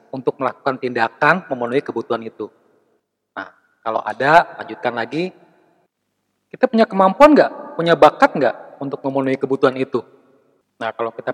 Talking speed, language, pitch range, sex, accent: 130 wpm, Indonesian, 120-160 Hz, male, native